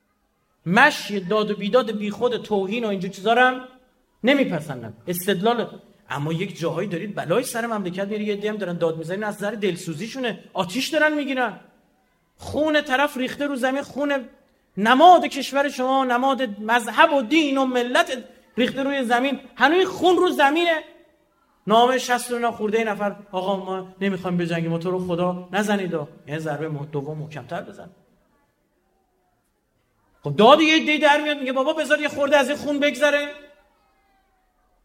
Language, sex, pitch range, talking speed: Persian, male, 170-275 Hz, 150 wpm